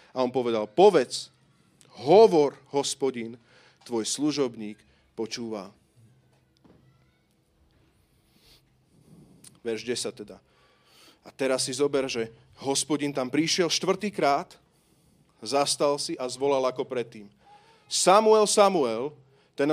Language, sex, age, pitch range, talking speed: Slovak, male, 40-59, 120-165 Hz, 95 wpm